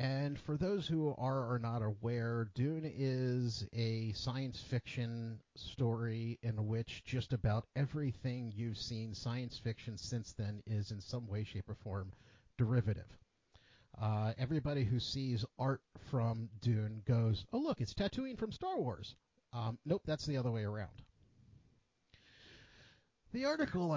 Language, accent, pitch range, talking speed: English, American, 110-140 Hz, 145 wpm